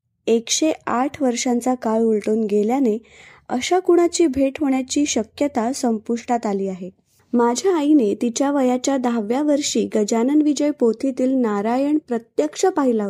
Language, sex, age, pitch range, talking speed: Marathi, female, 20-39, 220-275 Hz, 120 wpm